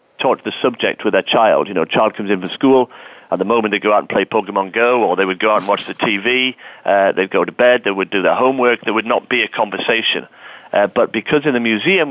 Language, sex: English, male